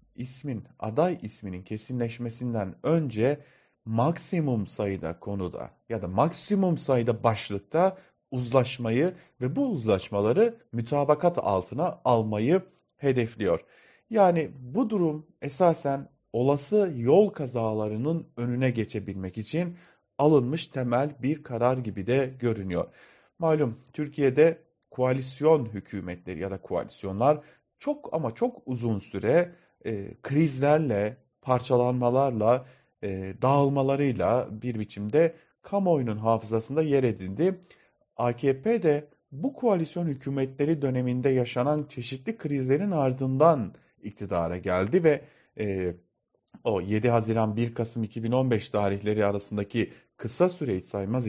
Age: 40-59